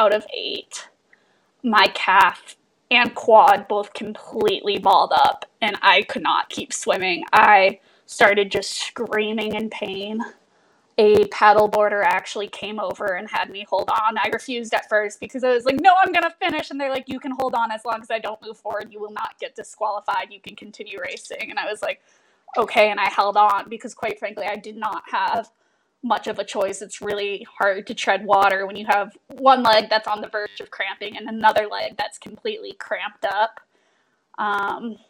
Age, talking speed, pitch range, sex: 20-39, 195 wpm, 210-235 Hz, female